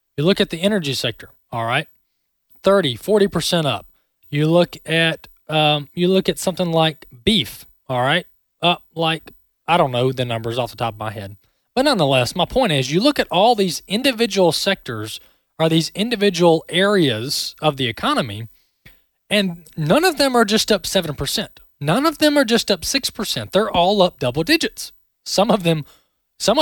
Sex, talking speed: male, 175 wpm